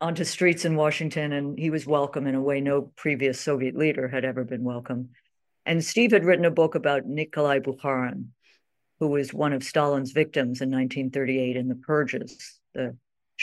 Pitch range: 140-175 Hz